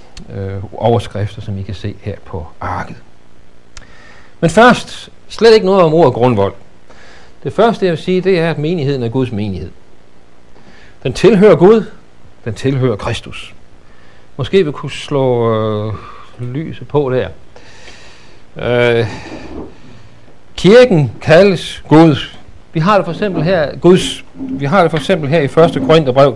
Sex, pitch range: male, 115-165 Hz